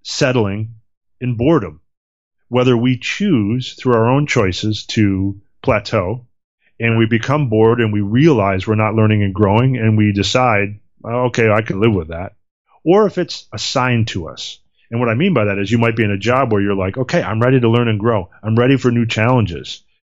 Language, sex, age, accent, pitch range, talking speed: English, male, 30-49, American, 95-120 Hz, 200 wpm